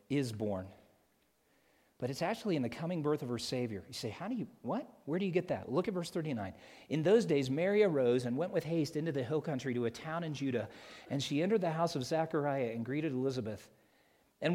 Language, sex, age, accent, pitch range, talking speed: English, male, 40-59, American, 125-170 Hz, 230 wpm